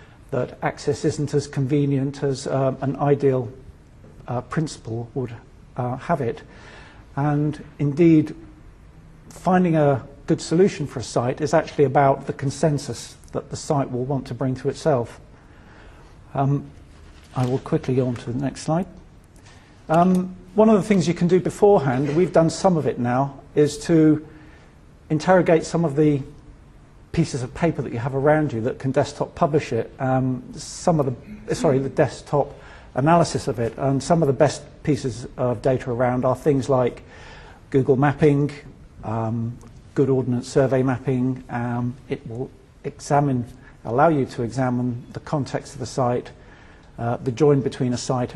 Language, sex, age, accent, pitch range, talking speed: English, male, 50-69, British, 125-150 Hz, 160 wpm